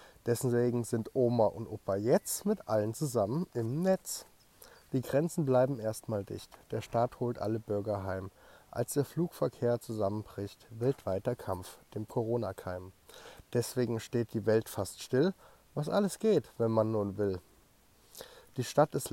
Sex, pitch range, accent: male, 105-135 Hz, German